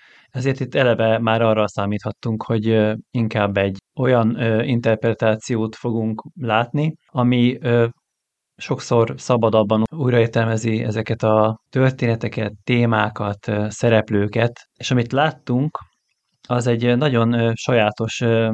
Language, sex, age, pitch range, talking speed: Hungarian, male, 20-39, 110-125 Hz, 95 wpm